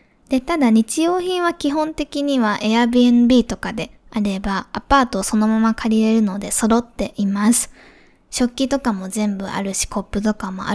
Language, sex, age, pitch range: Japanese, female, 20-39, 210-250 Hz